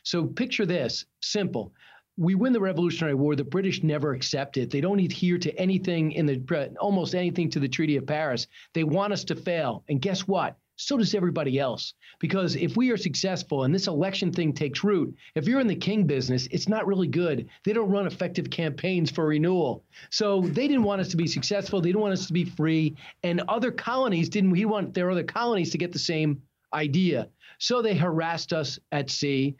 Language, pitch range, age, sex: English, 150-185 Hz, 40-59, male